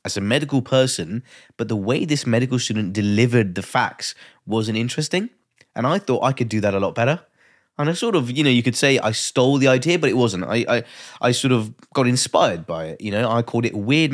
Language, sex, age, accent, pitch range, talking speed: English, male, 20-39, British, 100-130 Hz, 240 wpm